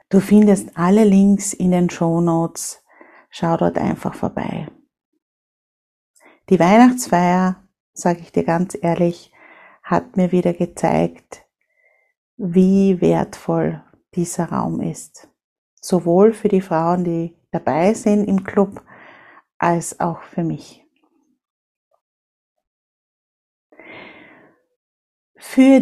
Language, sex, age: German, female, 50-69